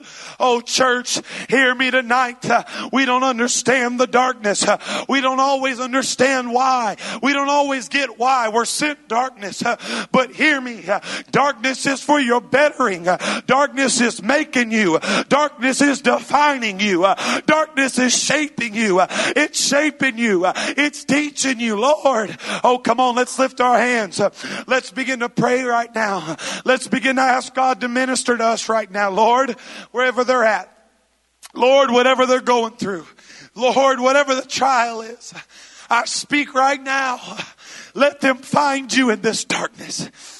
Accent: American